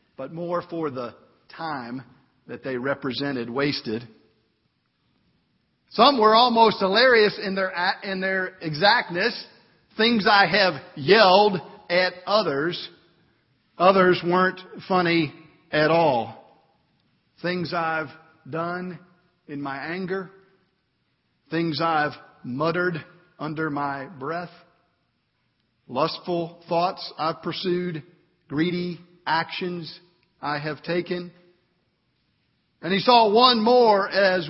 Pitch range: 150-185 Hz